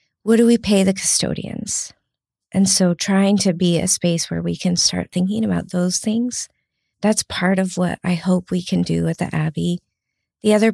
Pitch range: 185-225 Hz